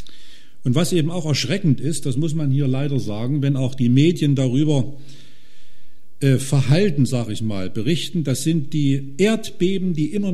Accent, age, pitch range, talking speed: German, 50-69, 130-170 Hz, 170 wpm